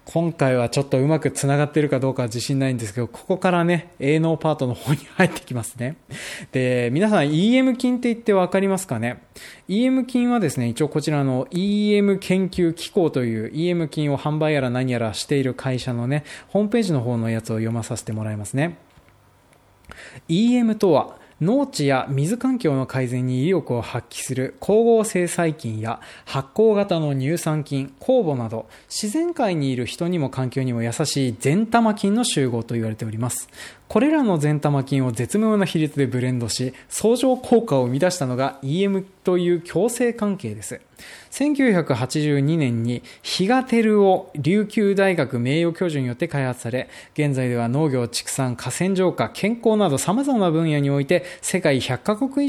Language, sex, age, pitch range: Japanese, male, 20-39, 125-190 Hz